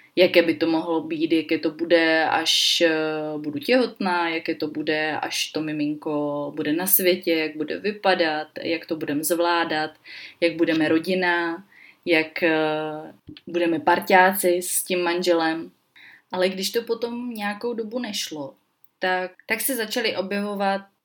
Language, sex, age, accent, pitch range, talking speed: Czech, female, 20-39, native, 165-195 Hz, 135 wpm